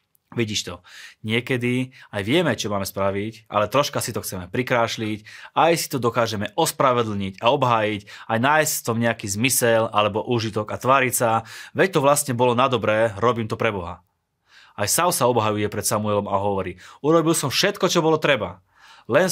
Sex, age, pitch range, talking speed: male, 20-39, 105-125 Hz, 175 wpm